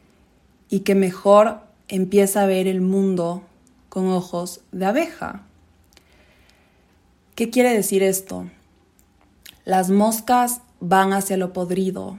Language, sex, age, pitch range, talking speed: Spanish, female, 20-39, 180-200 Hz, 110 wpm